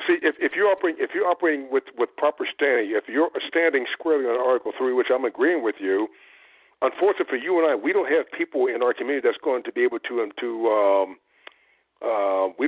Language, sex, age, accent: English, male, 60-79, American